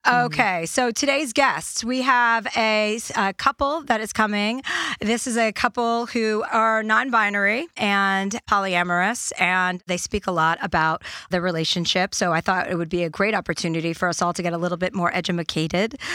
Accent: American